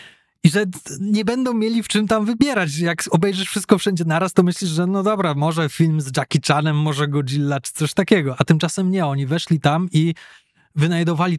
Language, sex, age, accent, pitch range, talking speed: Polish, male, 20-39, native, 150-180 Hz, 195 wpm